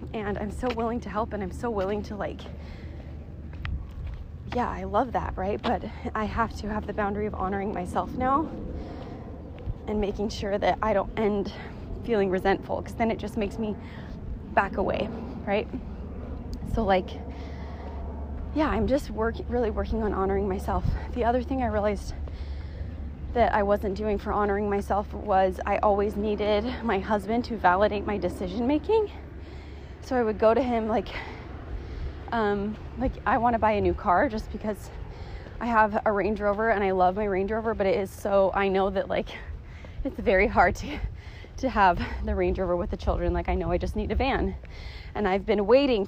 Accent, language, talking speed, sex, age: American, English, 180 wpm, female, 20-39